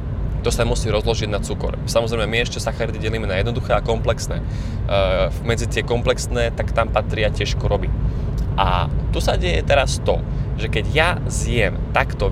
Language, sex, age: Slovak, male, 20-39